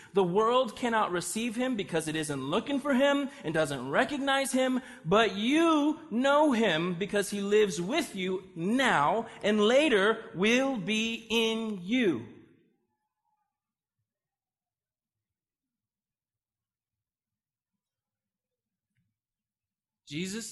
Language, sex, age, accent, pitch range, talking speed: English, male, 30-49, American, 160-230 Hz, 95 wpm